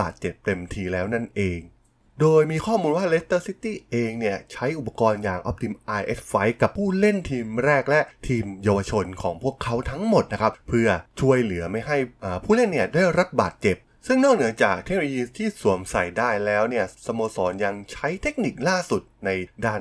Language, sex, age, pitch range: Thai, male, 20-39, 100-140 Hz